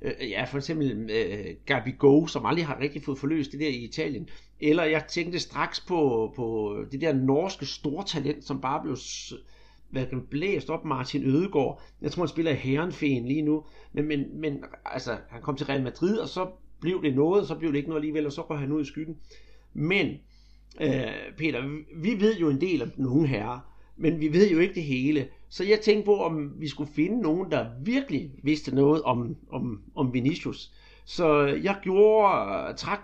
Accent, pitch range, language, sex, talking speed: native, 140-175 Hz, Danish, male, 195 wpm